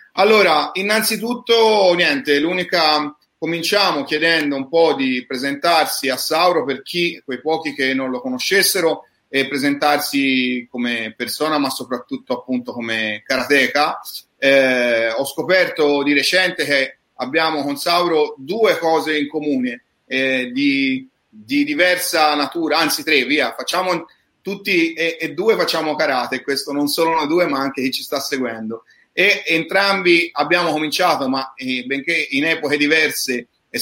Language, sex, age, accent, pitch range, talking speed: Italian, male, 30-49, native, 135-175 Hz, 140 wpm